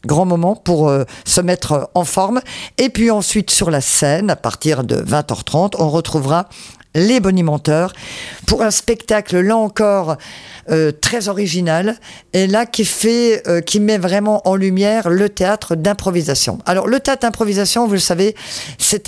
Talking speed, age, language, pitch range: 160 wpm, 50-69, French, 150-195 Hz